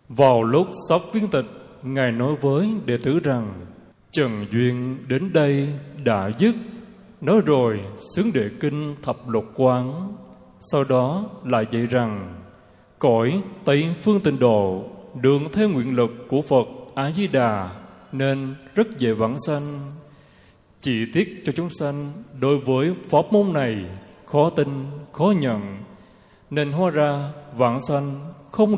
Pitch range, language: 115-150 Hz, Vietnamese